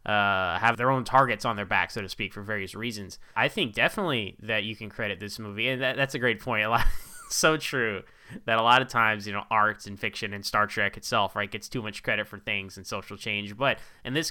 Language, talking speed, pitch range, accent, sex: English, 240 wpm, 105-130 Hz, American, male